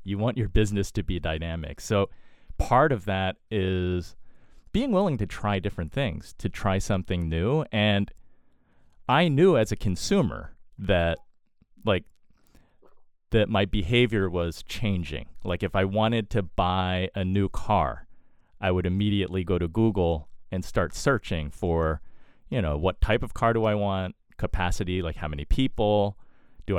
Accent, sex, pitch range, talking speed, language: American, male, 90-110 Hz, 155 wpm, English